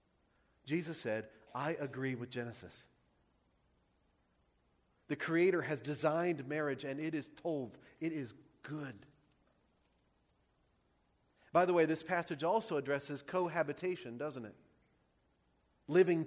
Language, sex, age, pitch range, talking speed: English, male, 40-59, 135-210 Hz, 105 wpm